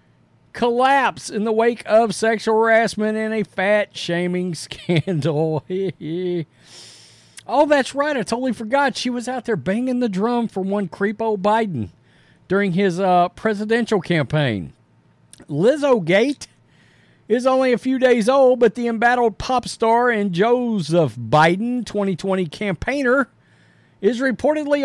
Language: English